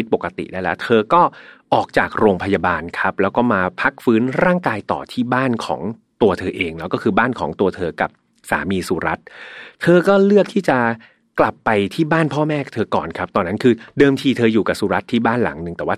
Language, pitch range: Thai, 100-135 Hz